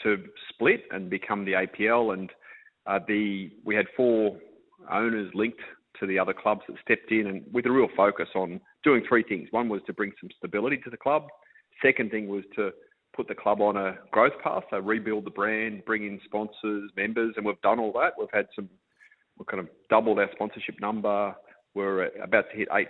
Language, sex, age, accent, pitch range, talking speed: English, male, 30-49, Australian, 100-115 Hz, 205 wpm